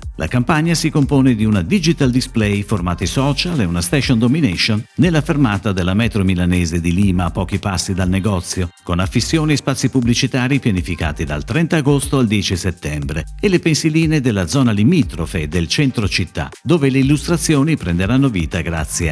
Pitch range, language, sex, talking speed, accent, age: 90-135 Hz, Italian, male, 165 wpm, native, 50-69